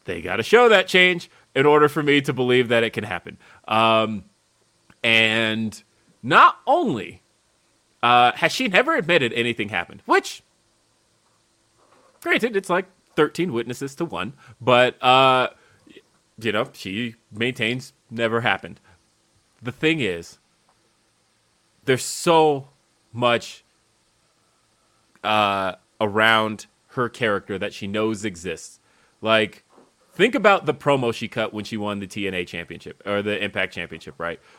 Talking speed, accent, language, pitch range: 130 wpm, American, English, 105-150 Hz